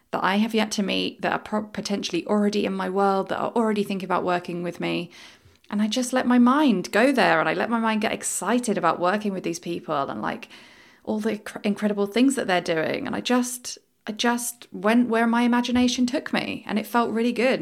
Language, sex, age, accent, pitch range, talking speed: English, female, 20-39, British, 175-215 Hz, 225 wpm